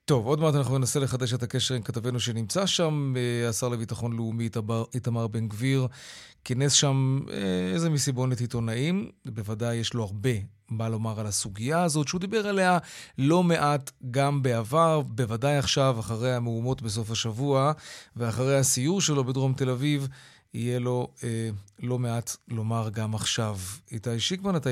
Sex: male